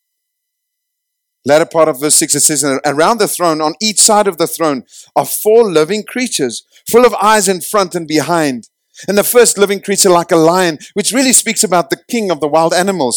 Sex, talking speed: male, 205 wpm